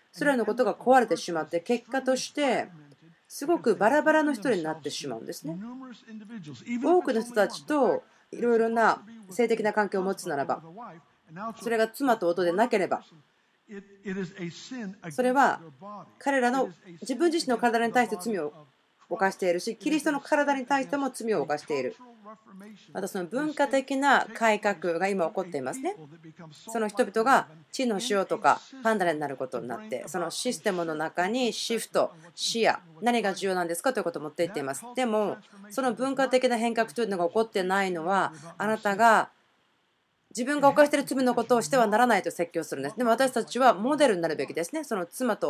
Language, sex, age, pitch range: Japanese, female, 40-59, 175-245 Hz